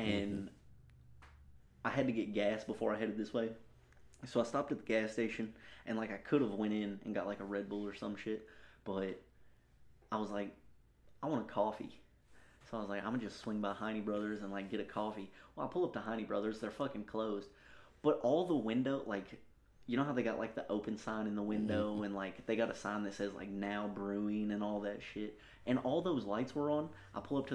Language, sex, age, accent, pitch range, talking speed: English, male, 30-49, American, 100-115 Hz, 240 wpm